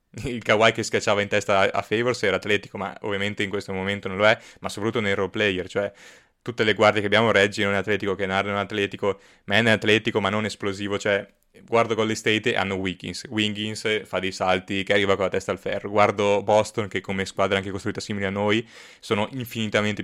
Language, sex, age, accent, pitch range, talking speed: Italian, male, 20-39, native, 95-105 Hz, 215 wpm